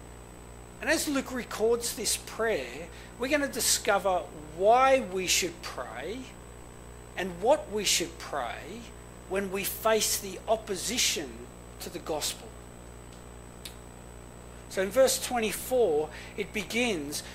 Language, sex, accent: English, male, Australian